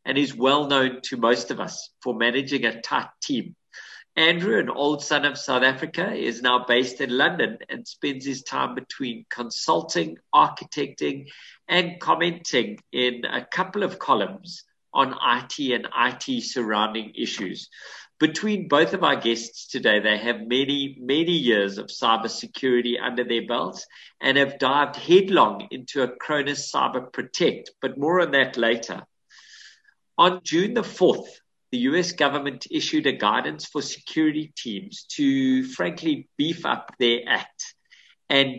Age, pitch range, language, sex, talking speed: 50-69, 120-165 Hz, English, male, 150 wpm